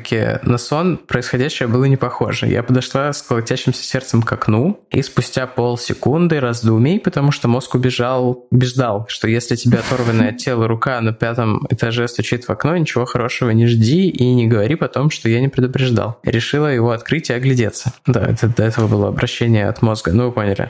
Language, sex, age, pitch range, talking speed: Russian, male, 20-39, 120-135 Hz, 185 wpm